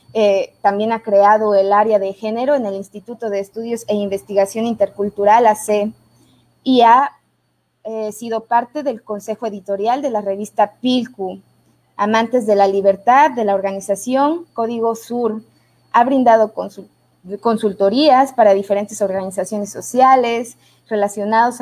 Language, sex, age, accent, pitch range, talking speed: Spanish, female, 20-39, Mexican, 200-235 Hz, 130 wpm